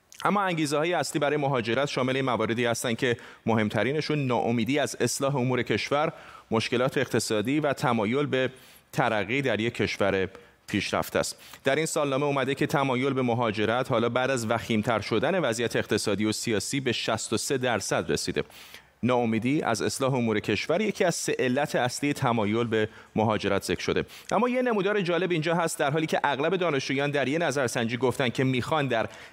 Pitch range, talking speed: 115-150 Hz, 170 wpm